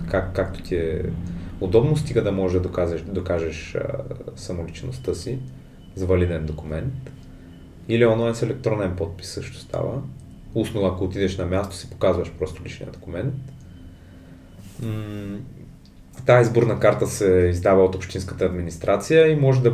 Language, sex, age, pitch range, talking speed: Bulgarian, male, 30-49, 90-120 Hz, 135 wpm